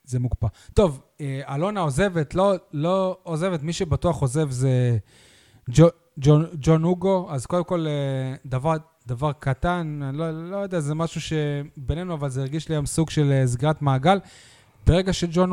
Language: Hebrew